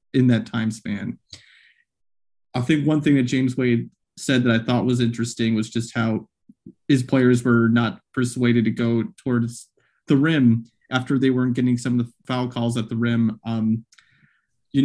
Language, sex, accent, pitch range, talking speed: English, male, American, 120-140 Hz, 180 wpm